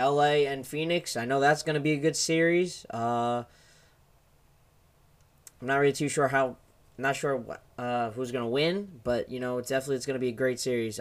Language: English